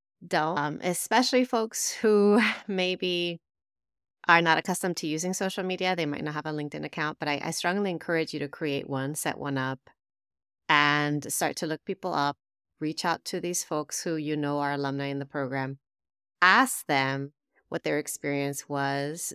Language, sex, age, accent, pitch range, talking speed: English, female, 30-49, American, 145-180 Hz, 175 wpm